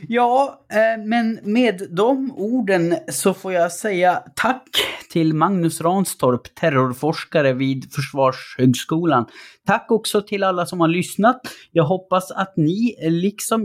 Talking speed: 125 wpm